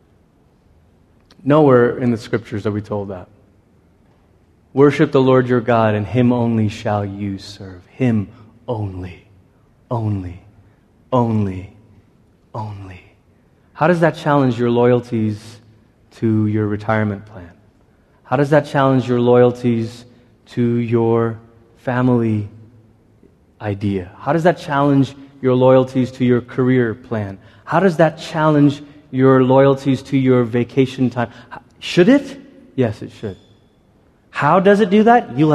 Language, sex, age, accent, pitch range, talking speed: English, male, 20-39, American, 110-140 Hz, 130 wpm